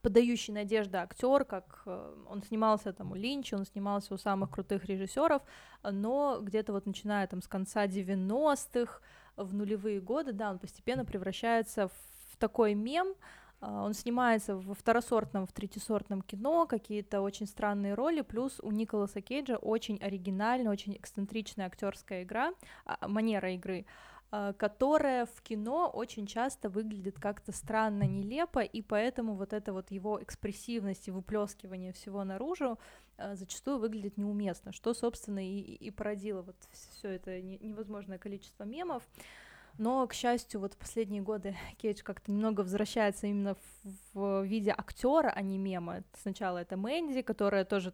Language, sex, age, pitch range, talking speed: Russian, female, 20-39, 195-230 Hz, 140 wpm